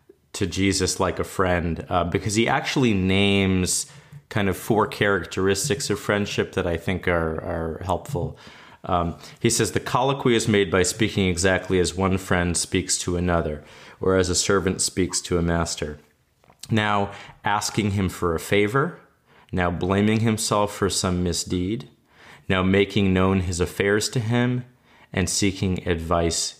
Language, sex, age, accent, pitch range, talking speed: English, male, 30-49, American, 90-115 Hz, 155 wpm